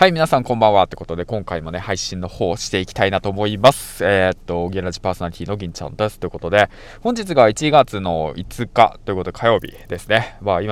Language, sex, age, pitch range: Japanese, male, 20-39, 90-120 Hz